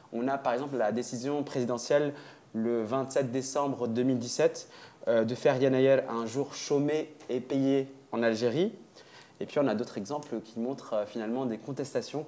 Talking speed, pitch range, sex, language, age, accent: 155 wpm, 115-145 Hz, male, French, 20-39, French